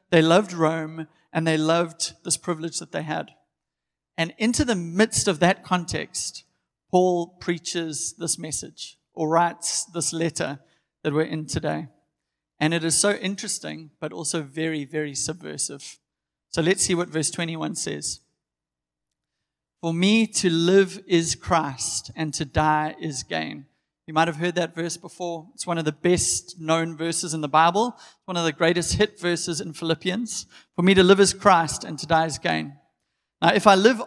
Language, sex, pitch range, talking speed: English, male, 160-190 Hz, 175 wpm